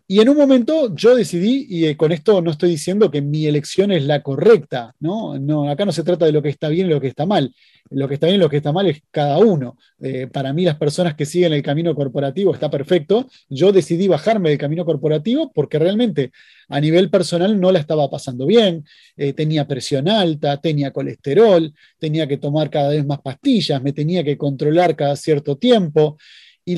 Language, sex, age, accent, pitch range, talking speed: Spanish, male, 20-39, Argentinian, 145-200 Hz, 215 wpm